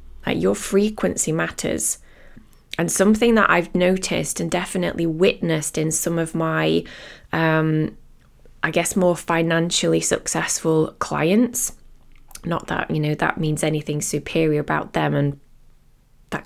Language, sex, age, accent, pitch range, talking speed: English, female, 20-39, British, 150-180 Hz, 130 wpm